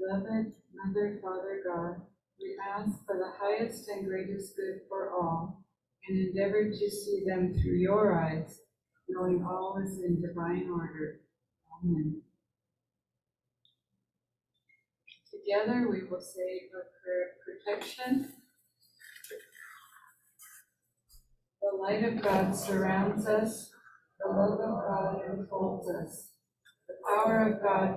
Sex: female